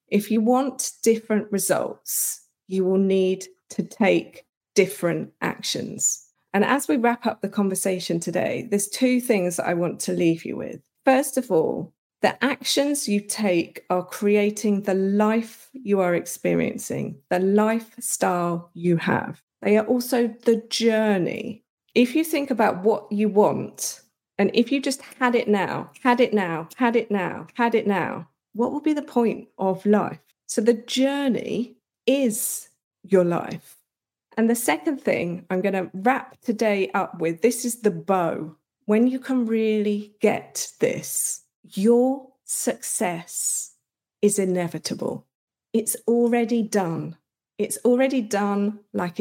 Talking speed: 150 wpm